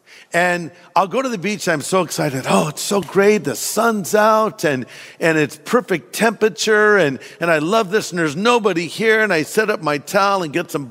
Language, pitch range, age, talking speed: English, 150-190 Hz, 50-69, 220 wpm